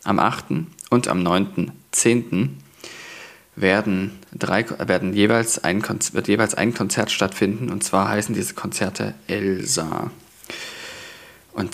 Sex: male